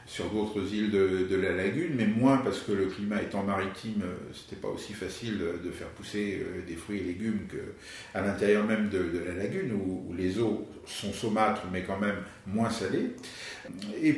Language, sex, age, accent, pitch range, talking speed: French, male, 50-69, French, 95-120 Hz, 190 wpm